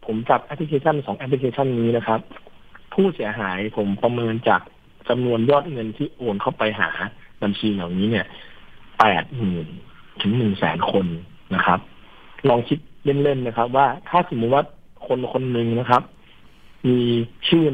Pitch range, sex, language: 110-145 Hz, male, Thai